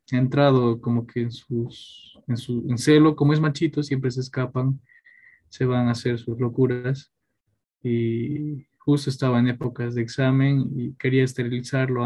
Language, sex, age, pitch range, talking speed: Spanish, male, 20-39, 120-145 Hz, 165 wpm